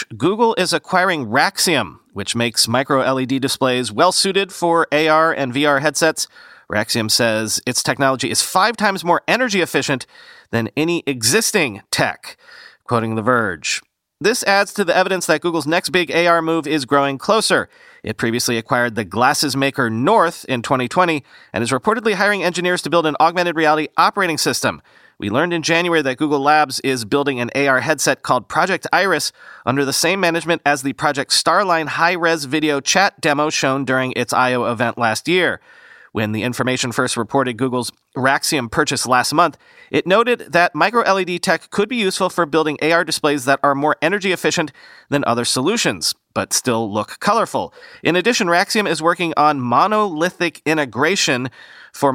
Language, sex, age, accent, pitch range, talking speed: English, male, 40-59, American, 130-175 Hz, 165 wpm